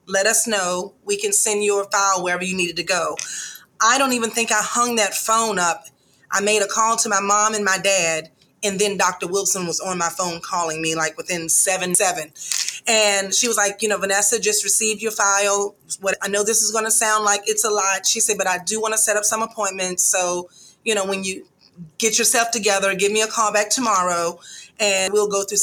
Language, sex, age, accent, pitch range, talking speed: English, female, 30-49, American, 185-210 Hz, 225 wpm